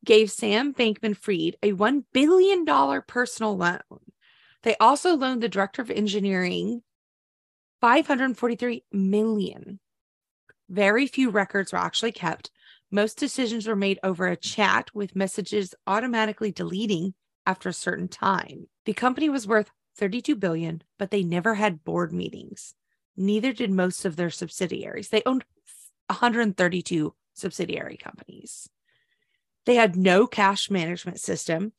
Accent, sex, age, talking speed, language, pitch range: American, female, 30-49, 125 wpm, English, 190-235 Hz